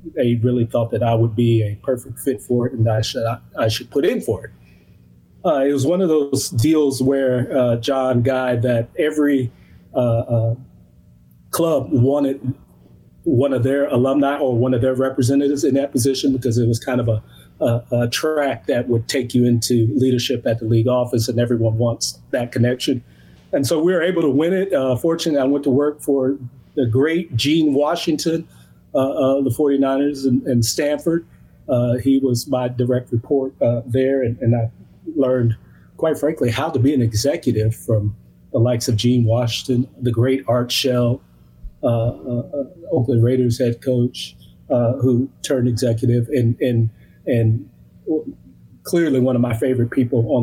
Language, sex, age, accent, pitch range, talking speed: English, male, 30-49, American, 115-135 Hz, 175 wpm